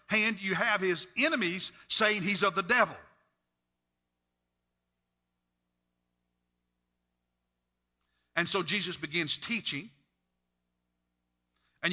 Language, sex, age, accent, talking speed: English, male, 50-69, American, 80 wpm